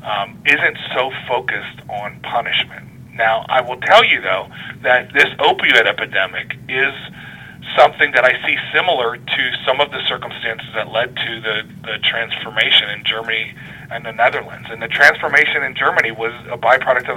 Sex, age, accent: male, 40-59, American